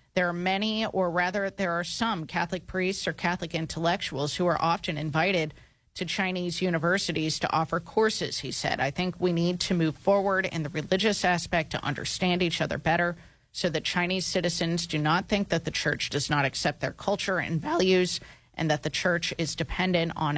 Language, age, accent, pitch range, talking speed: English, 30-49, American, 150-185 Hz, 190 wpm